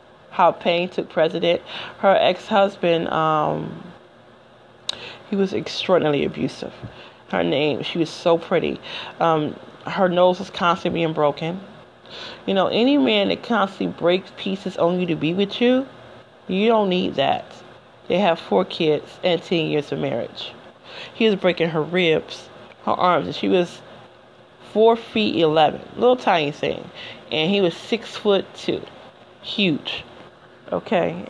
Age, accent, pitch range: 30-49, American, 160-195 Hz